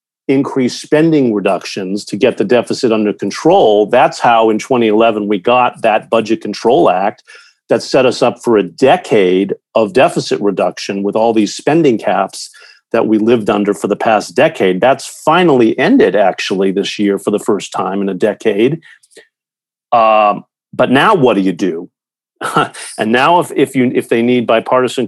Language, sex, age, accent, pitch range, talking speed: English, male, 40-59, American, 100-120 Hz, 165 wpm